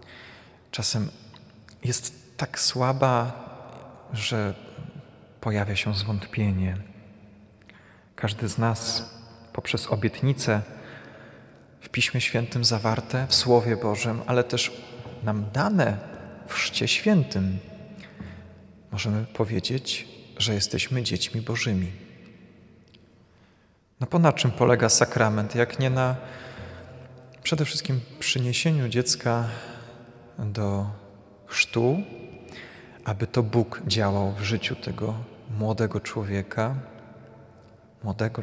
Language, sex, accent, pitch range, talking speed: Polish, male, native, 105-125 Hz, 90 wpm